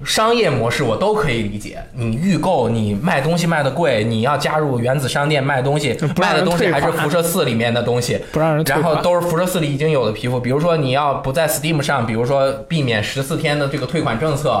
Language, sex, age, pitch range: Chinese, male, 20-39, 125-170 Hz